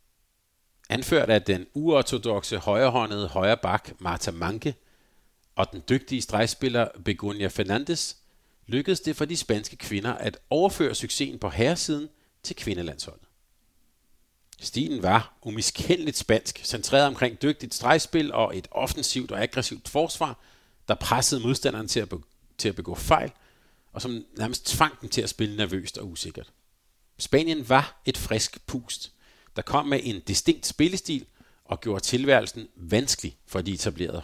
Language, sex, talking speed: Danish, male, 135 wpm